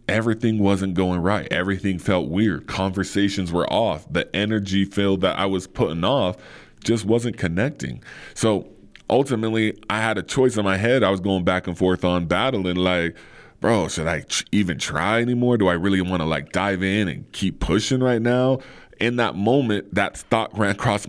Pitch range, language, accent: 90-115 Hz, English, American